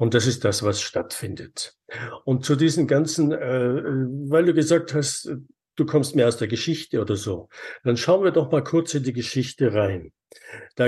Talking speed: 190 wpm